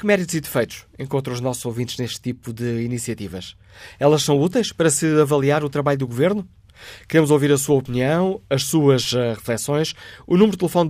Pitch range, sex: 120-155 Hz, male